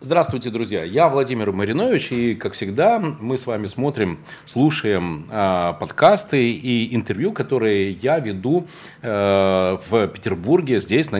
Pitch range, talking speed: 110-160 Hz, 135 wpm